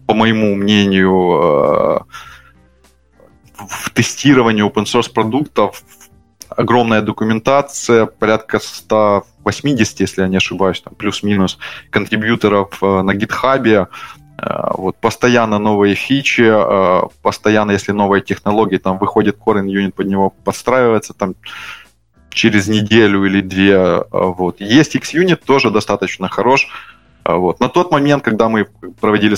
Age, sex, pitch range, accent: 20-39, male, 100-120 Hz, native